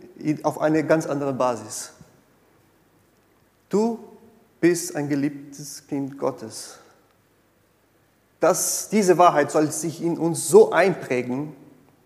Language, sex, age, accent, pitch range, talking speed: German, male, 30-49, German, 145-195 Hz, 95 wpm